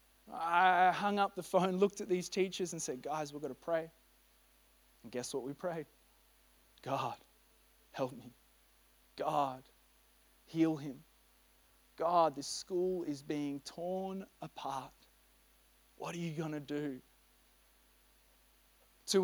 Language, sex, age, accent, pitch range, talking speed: English, male, 20-39, Australian, 145-180 Hz, 130 wpm